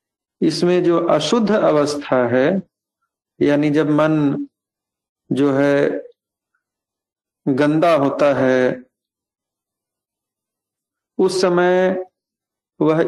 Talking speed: 75 wpm